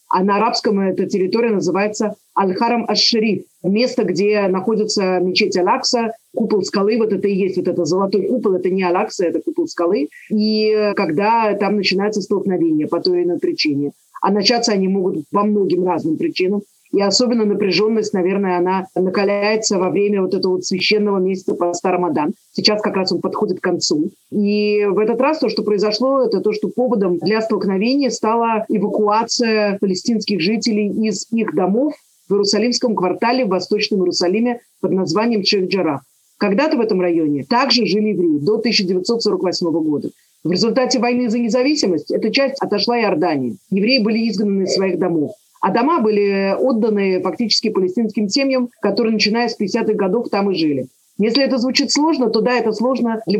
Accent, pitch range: native, 190-230 Hz